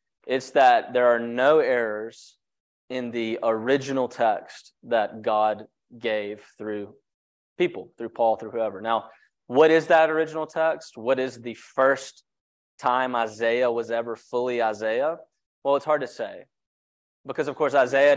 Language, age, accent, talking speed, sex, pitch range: English, 20-39, American, 145 wpm, male, 115-140 Hz